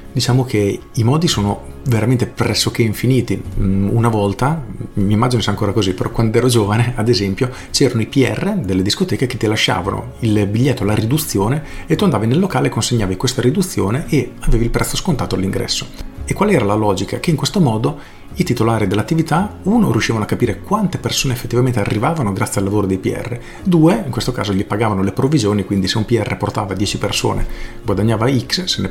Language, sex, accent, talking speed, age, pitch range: Italian, male, native, 190 wpm, 40-59, 100-125 Hz